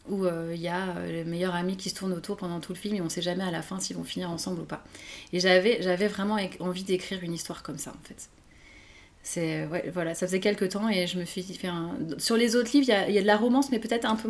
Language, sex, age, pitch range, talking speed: French, female, 30-49, 175-205 Hz, 300 wpm